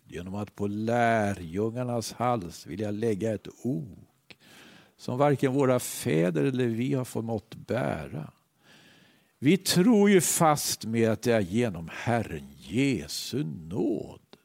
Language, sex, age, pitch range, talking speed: Swedish, male, 60-79, 105-155 Hz, 125 wpm